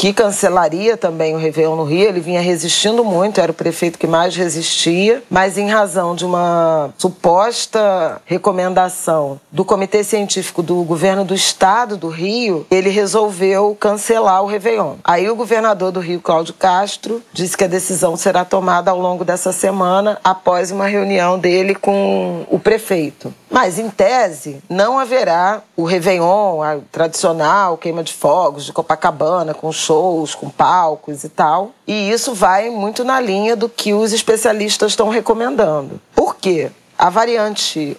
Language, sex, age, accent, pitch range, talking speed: Portuguese, female, 40-59, Brazilian, 170-210 Hz, 155 wpm